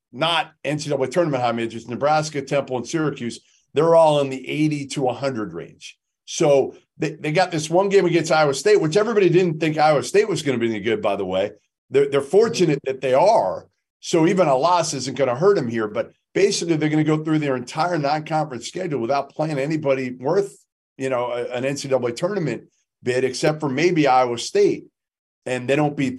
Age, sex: 40-59, male